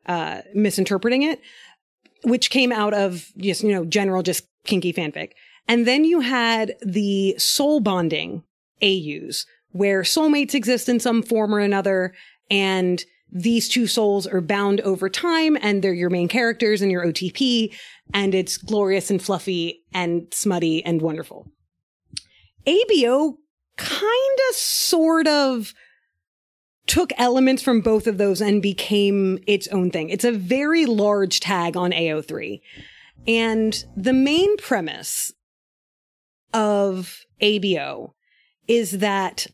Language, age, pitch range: English, 30-49, 190-245 Hz